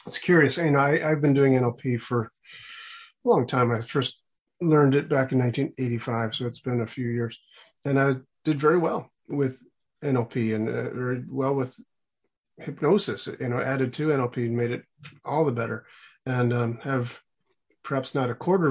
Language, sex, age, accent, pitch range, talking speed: English, male, 40-59, American, 125-160 Hz, 180 wpm